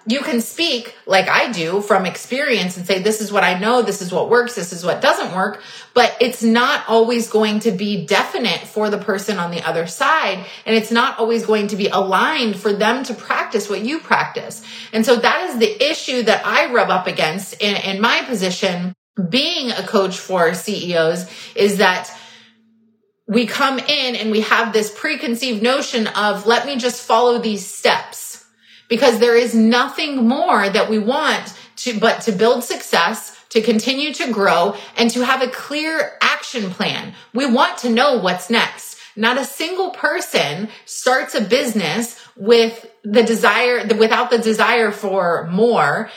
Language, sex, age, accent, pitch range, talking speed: English, female, 30-49, American, 205-245 Hz, 180 wpm